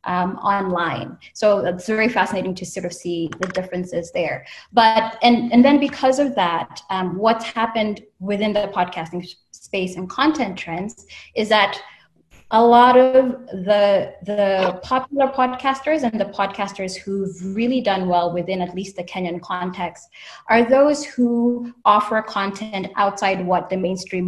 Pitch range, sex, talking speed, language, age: 180-220 Hz, female, 150 wpm, English, 20-39